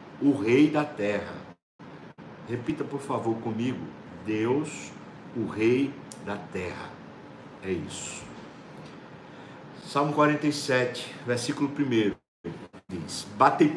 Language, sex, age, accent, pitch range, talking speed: Portuguese, male, 60-79, Brazilian, 125-155 Hz, 90 wpm